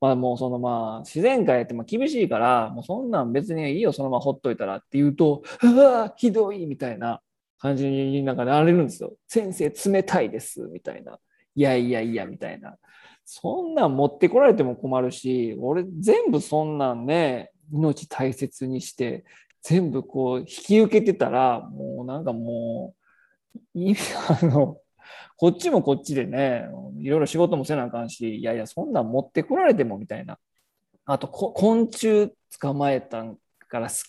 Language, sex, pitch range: Japanese, male, 130-185 Hz